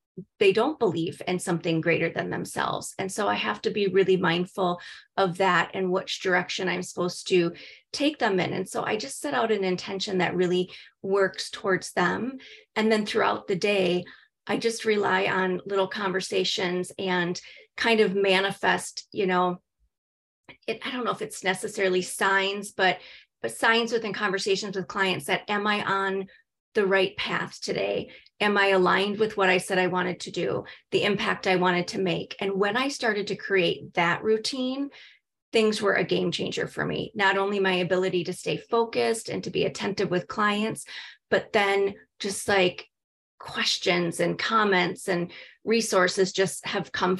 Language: English